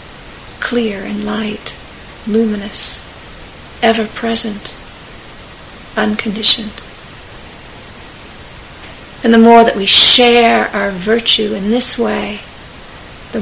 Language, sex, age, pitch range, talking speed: English, female, 50-69, 210-230 Hz, 80 wpm